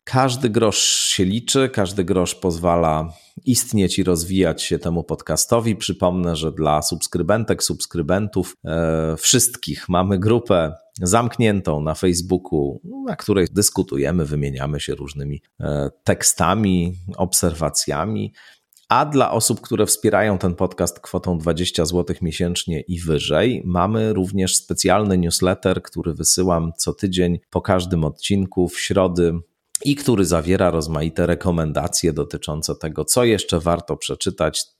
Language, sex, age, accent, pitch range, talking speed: Polish, male, 40-59, native, 80-95 Hz, 120 wpm